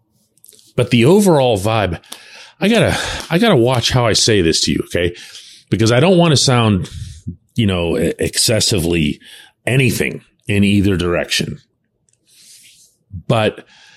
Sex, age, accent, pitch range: male, 40-59, American, 85-120 Hz